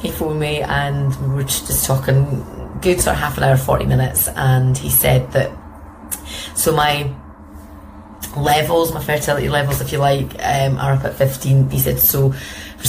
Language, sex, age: English, female, 30-49